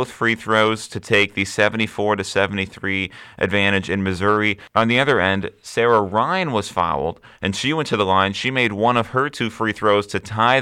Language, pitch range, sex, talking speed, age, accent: English, 95-115 Hz, male, 200 wpm, 30-49, American